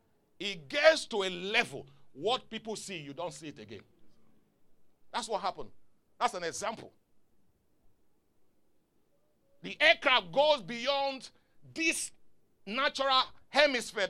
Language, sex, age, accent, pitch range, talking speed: English, male, 50-69, Nigerian, 185-255 Hz, 110 wpm